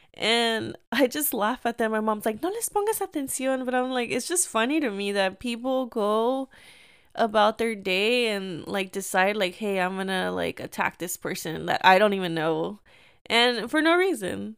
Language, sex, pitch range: English, female, 195-250 Hz